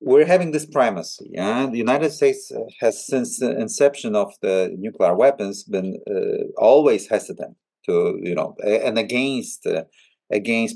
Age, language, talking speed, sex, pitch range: 40-59, Polish, 155 wpm, male, 110-175 Hz